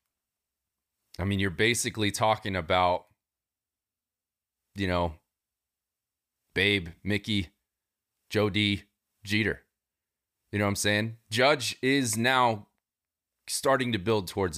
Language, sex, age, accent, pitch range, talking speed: English, male, 30-49, American, 100-125 Hz, 100 wpm